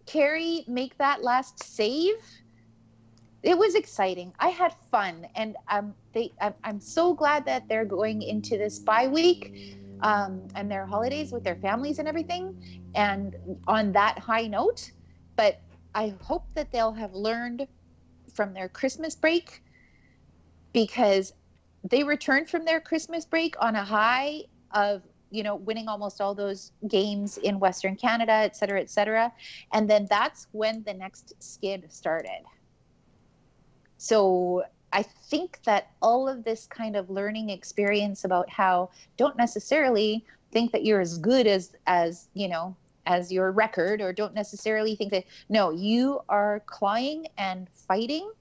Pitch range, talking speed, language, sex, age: 195-250 Hz, 150 wpm, English, female, 30-49